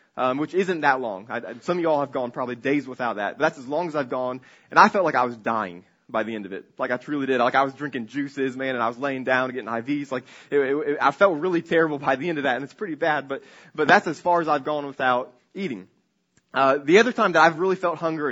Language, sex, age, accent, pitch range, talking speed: English, male, 20-39, American, 130-160 Hz, 290 wpm